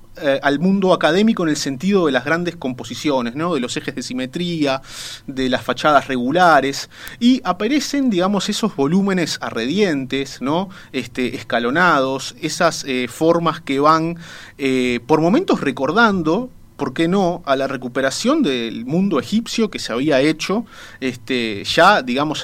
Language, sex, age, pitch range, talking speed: Spanish, male, 30-49, 130-185 Hz, 135 wpm